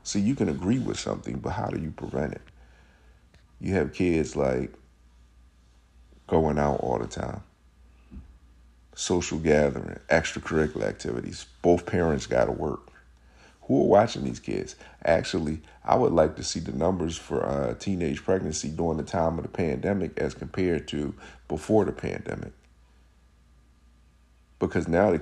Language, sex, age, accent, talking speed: English, male, 50-69, American, 150 wpm